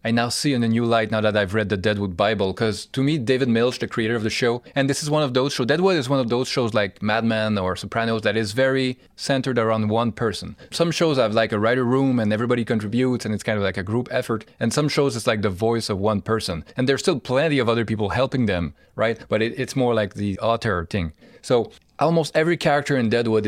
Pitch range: 105-125 Hz